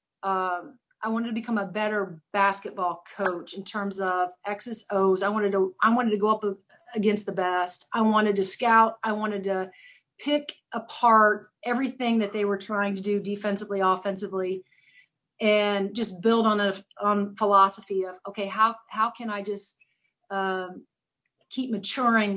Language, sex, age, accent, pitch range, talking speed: English, female, 30-49, American, 195-225 Hz, 160 wpm